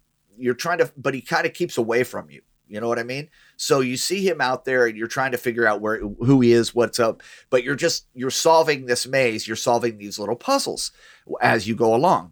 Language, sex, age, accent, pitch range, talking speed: English, male, 30-49, American, 115-140 Hz, 245 wpm